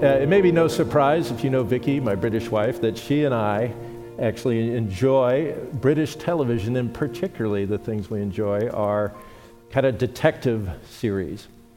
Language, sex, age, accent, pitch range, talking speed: English, male, 50-69, American, 115-140 Hz, 165 wpm